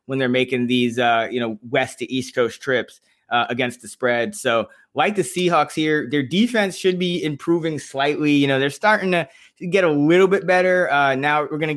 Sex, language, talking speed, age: male, English, 215 wpm, 20-39